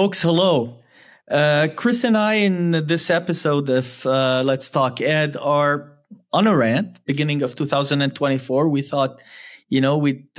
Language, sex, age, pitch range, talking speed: English, male, 20-39, 125-160 Hz, 150 wpm